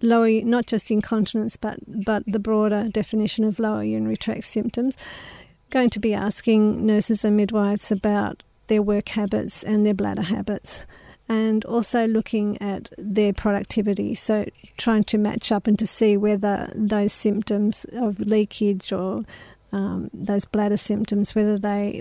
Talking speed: 150 wpm